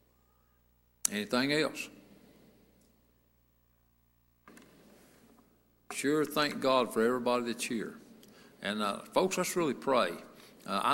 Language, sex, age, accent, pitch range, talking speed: English, male, 60-79, American, 115-190 Hz, 90 wpm